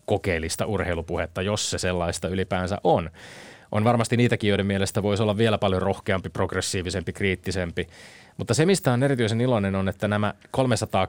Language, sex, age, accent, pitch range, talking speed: Finnish, male, 20-39, native, 95-110 Hz, 155 wpm